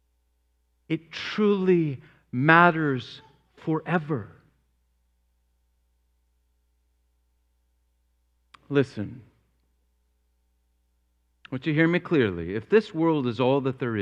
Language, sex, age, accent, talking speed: English, male, 50-69, American, 75 wpm